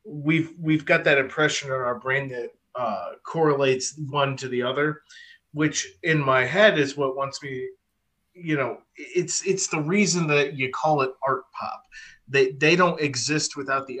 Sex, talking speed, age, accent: male, 175 wpm, 30-49, American